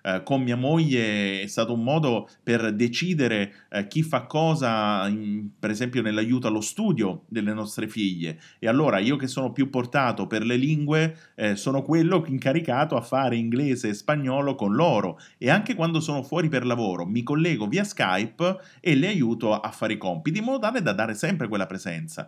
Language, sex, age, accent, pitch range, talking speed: Italian, male, 30-49, native, 110-155 Hz, 190 wpm